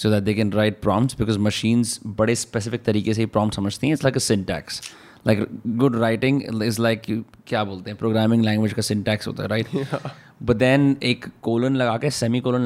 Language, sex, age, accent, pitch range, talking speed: Hindi, male, 20-39, native, 105-120 Hz, 205 wpm